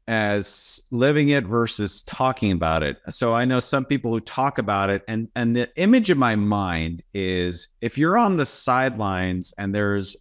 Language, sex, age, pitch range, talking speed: English, male, 30-49, 100-130 Hz, 180 wpm